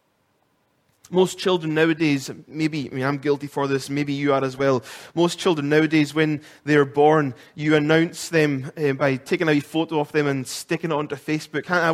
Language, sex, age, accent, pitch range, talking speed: English, male, 20-39, British, 150-170 Hz, 190 wpm